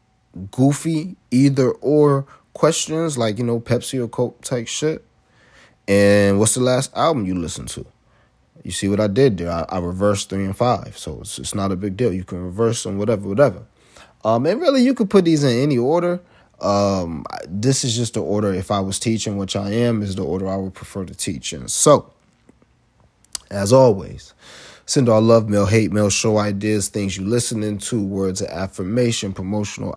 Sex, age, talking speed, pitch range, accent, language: male, 30-49, 195 wpm, 100-120 Hz, American, English